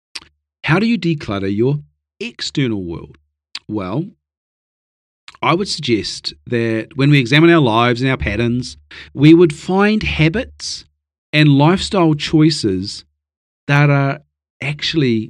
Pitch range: 95-140 Hz